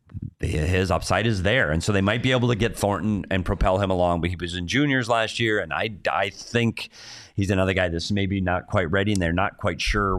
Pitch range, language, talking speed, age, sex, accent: 85-105 Hz, English, 240 wpm, 40-59, male, American